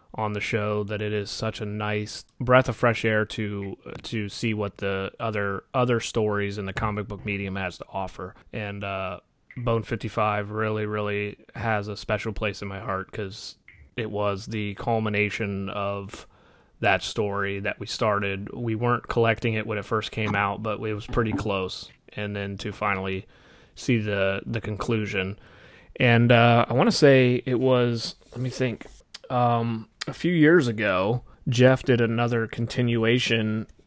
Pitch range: 100-115 Hz